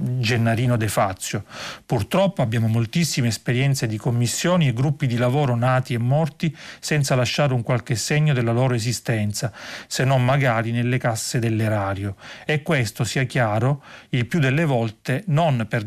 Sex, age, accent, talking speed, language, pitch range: male, 40-59, native, 150 wpm, Italian, 115-140 Hz